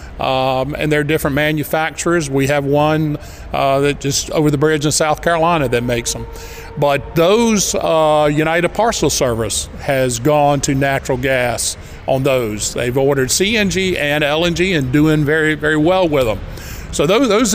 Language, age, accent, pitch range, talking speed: English, 50-69, American, 135-175 Hz, 165 wpm